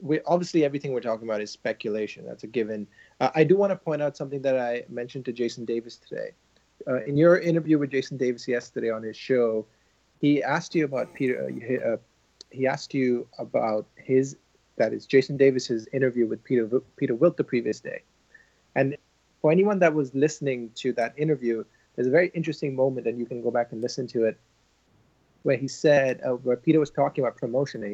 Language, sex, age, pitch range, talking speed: English, male, 30-49, 120-145 Hz, 200 wpm